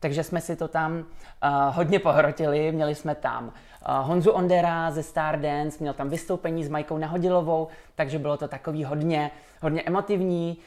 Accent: native